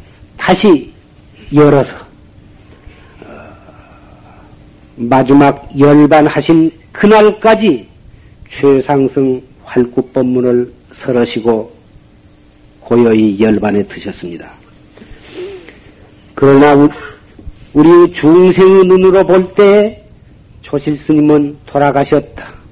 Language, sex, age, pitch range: Korean, male, 50-69, 125-175 Hz